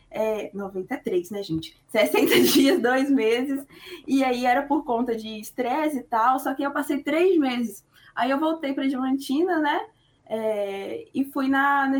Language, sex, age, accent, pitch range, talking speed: Portuguese, female, 20-39, Brazilian, 225-285 Hz, 170 wpm